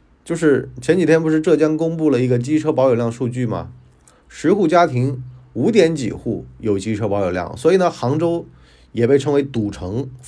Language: Chinese